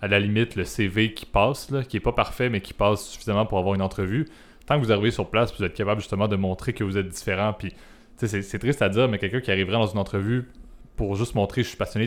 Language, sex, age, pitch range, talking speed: French, male, 20-39, 95-110 Hz, 275 wpm